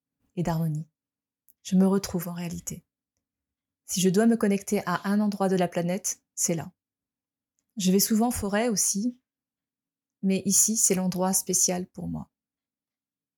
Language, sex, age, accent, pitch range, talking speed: French, female, 20-39, French, 185-215 Hz, 150 wpm